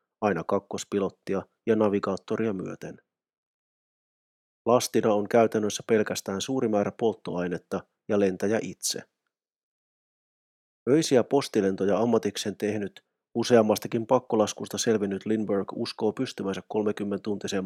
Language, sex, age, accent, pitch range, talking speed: Finnish, male, 30-49, native, 100-115 Hz, 90 wpm